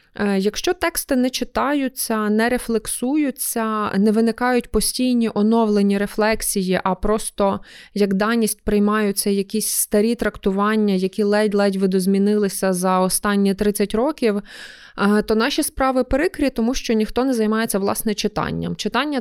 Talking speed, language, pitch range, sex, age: 120 wpm, Ukrainian, 200-235 Hz, female, 20-39